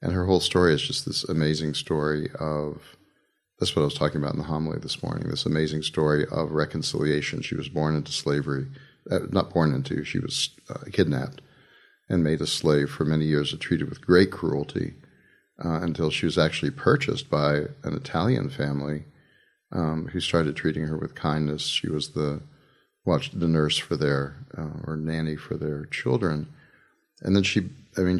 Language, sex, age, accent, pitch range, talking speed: English, male, 40-59, American, 75-85 Hz, 185 wpm